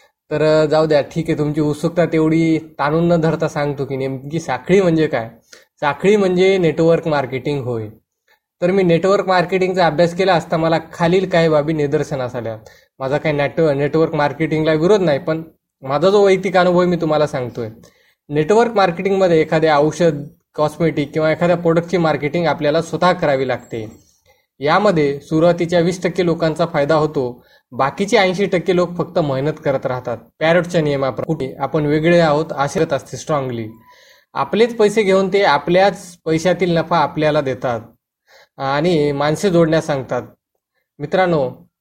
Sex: male